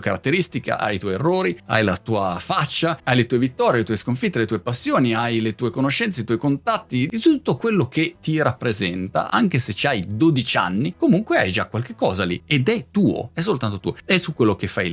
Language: Italian